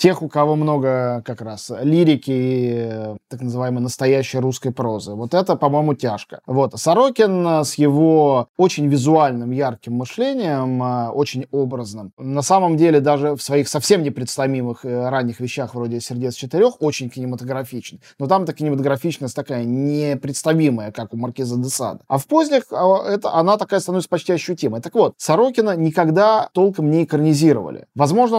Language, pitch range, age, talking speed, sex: Russian, 130-170 Hz, 20-39, 140 wpm, male